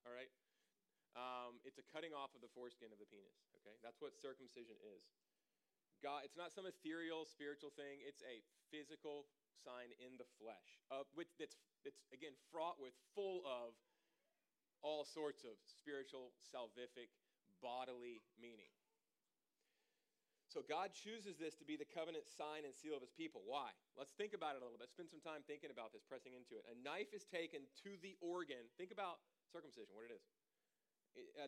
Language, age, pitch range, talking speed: English, 30-49, 140-210 Hz, 175 wpm